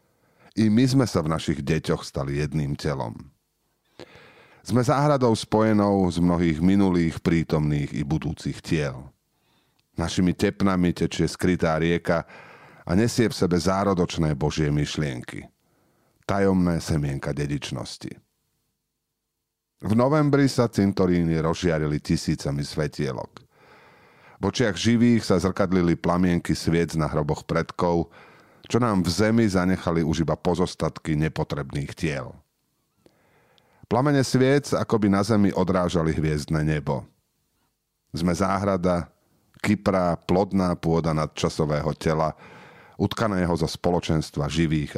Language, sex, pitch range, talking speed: Slovak, male, 80-100 Hz, 110 wpm